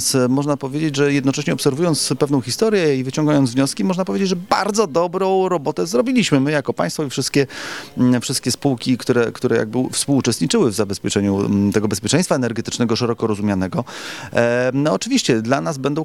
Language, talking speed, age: Polish, 150 wpm, 30-49